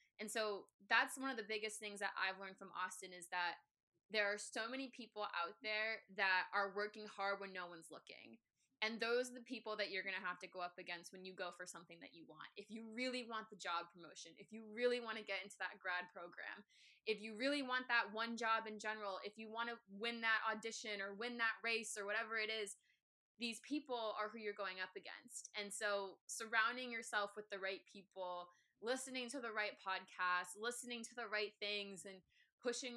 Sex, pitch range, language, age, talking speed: female, 190-225 Hz, English, 20-39, 220 wpm